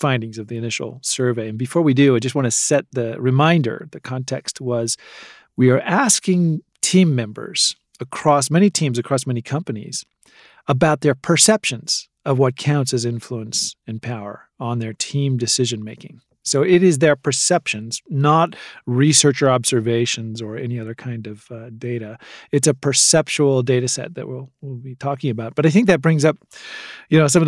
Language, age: English, 40-59